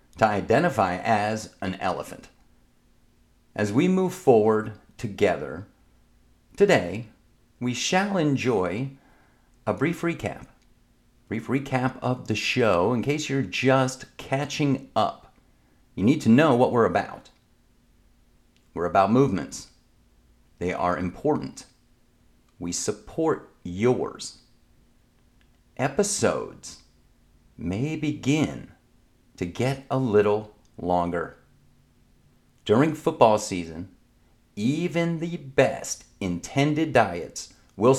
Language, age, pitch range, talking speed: English, 50-69, 100-135 Hz, 95 wpm